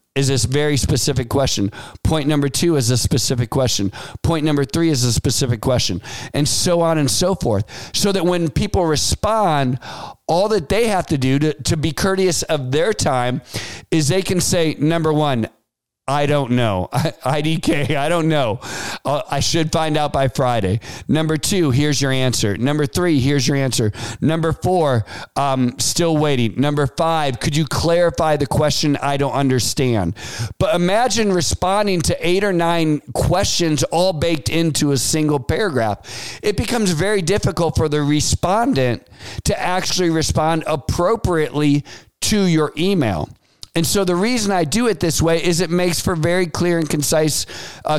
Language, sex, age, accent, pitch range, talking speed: English, male, 50-69, American, 135-175 Hz, 170 wpm